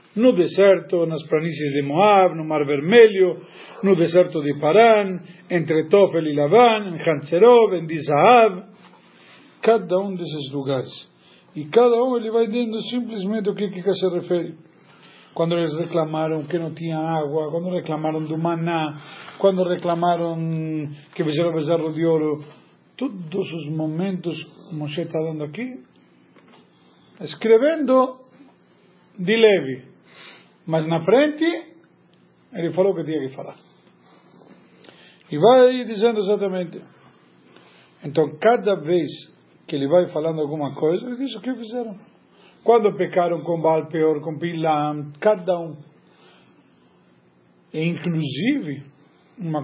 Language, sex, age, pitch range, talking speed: Portuguese, male, 50-69, 155-205 Hz, 130 wpm